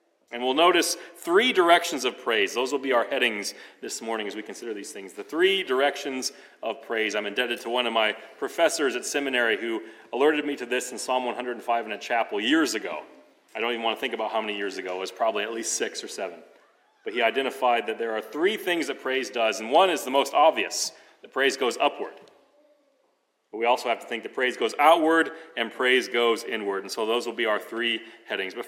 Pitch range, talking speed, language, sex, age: 120-185 Hz, 225 wpm, English, male, 40-59